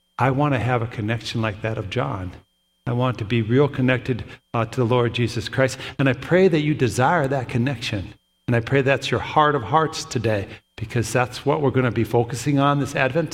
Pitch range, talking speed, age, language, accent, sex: 120-145 Hz, 225 wpm, 60-79, English, American, male